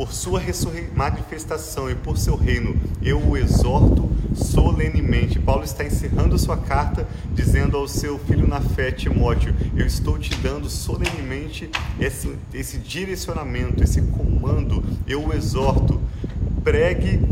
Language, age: Portuguese, 40-59